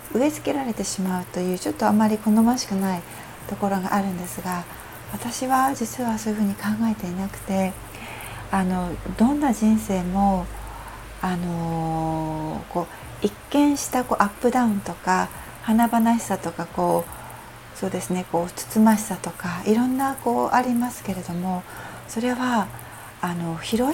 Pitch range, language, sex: 180-230 Hz, Japanese, female